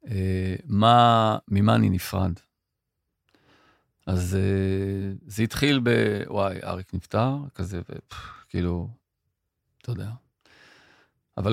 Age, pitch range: 40-59, 95-120 Hz